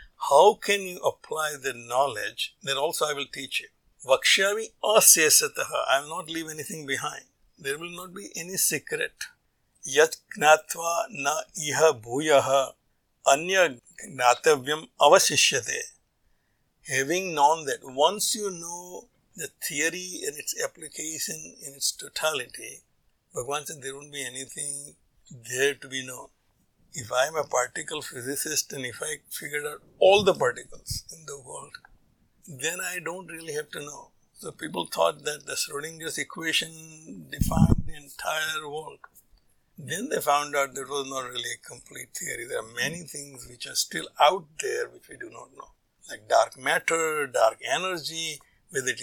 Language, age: English, 60-79